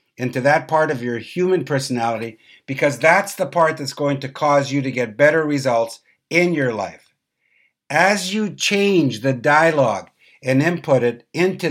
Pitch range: 125-160 Hz